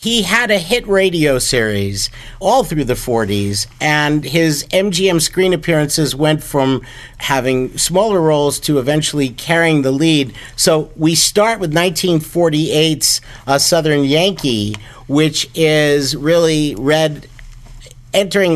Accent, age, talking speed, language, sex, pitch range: American, 50-69, 125 wpm, English, male, 125-160 Hz